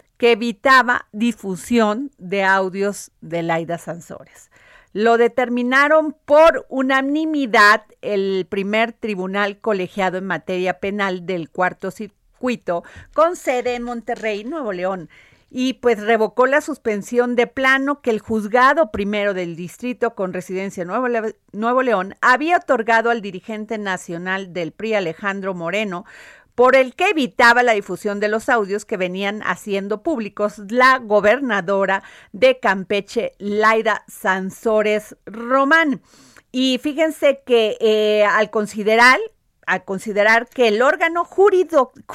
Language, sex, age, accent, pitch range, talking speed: Spanish, female, 40-59, Mexican, 200-260 Hz, 125 wpm